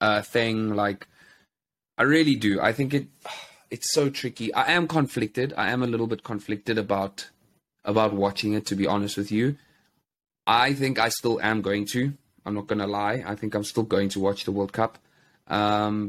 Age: 20-39